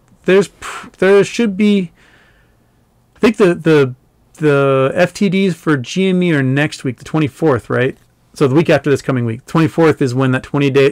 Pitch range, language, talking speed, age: 125-160 Hz, English, 165 wpm, 30-49